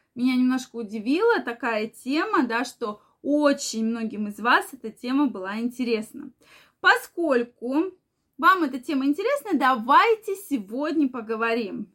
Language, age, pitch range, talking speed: Russian, 20-39, 235-315 Hz, 115 wpm